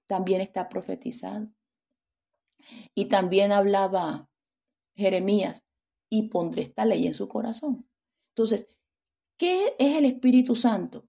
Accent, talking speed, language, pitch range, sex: Venezuelan, 110 wpm, English, 195-240 Hz, female